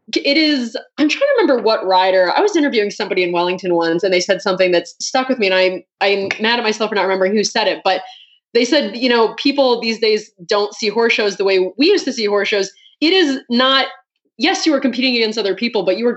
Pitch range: 190-250 Hz